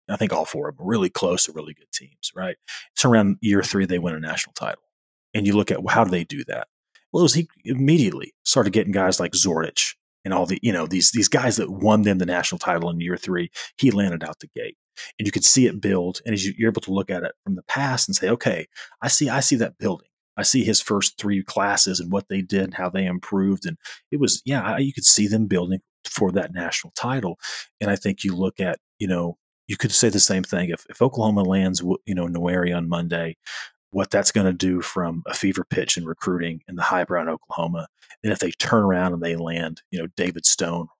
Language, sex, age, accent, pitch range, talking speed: English, male, 30-49, American, 90-105 Hz, 250 wpm